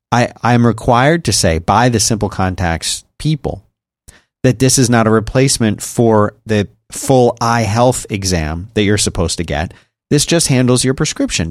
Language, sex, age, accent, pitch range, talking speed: English, male, 40-59, American, 105-145 Hz, 165 wpm